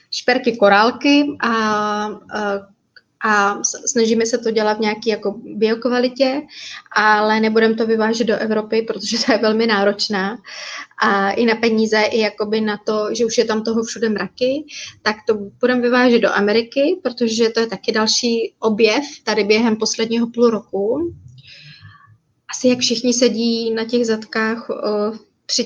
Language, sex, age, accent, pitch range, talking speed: Czech, female, 20-39, native, 215-240 Hz, 150 wpm